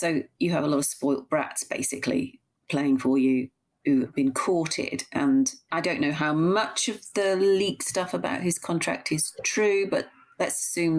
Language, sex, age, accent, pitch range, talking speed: English, female, 40-59, British, 150-220 Hz, 185 wpm